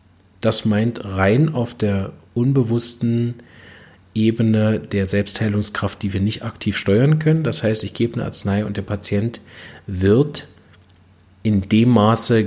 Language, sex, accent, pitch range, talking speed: German, male, German, 95-115 Hz, 135 wpm